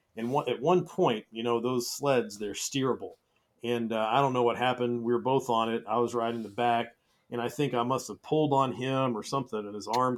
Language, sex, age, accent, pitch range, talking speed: English, male, 40-59, American, 110-140 Hz, 240 wpm